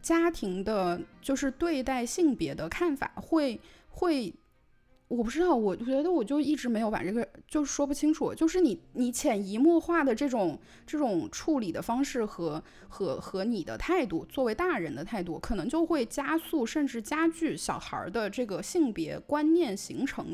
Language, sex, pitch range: Chinese, female, 200-300 Hz